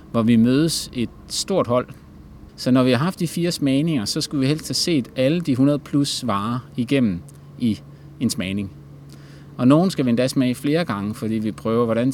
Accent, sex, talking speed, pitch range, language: native, male, 205 wpm, 110-145 Hz, Danish